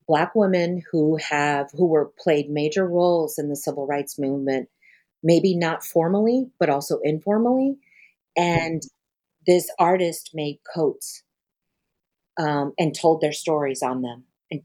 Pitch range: 145-180 Hz